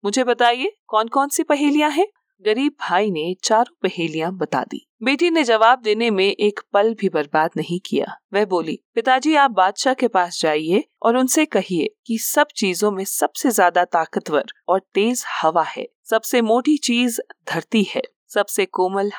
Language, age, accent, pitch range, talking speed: Hindi, 40-59, native, 185-245 Hz, 170 wpm